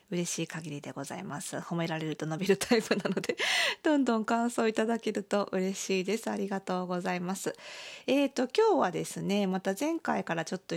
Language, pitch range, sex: Japanese, 175-230 Hz, female